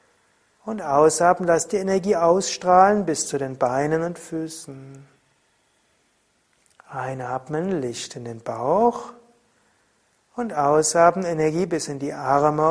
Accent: German